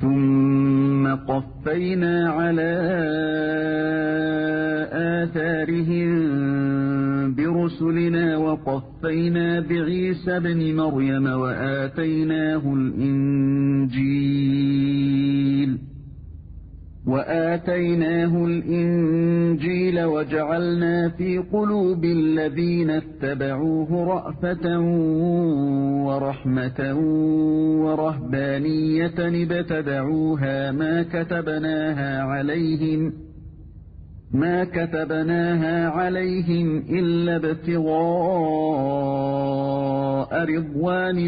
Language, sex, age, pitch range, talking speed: English, male, 50-69, 140-170 Hz, 45 wpm